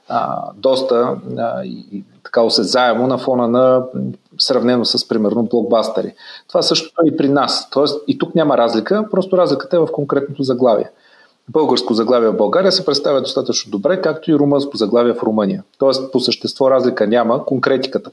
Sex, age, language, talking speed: male, 40-59, Bulgarian, 165 wpm